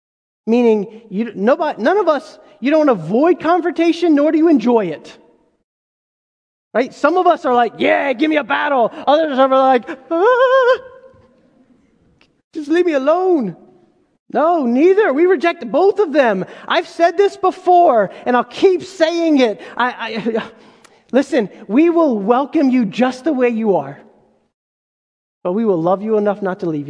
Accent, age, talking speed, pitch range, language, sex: American, 30-49, 160 wpm, 225-330 Hz, English, male